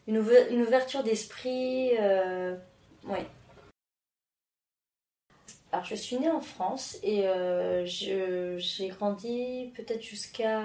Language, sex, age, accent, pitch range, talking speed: French, female, 30-49, French, 180-215 Hz, 100 wpm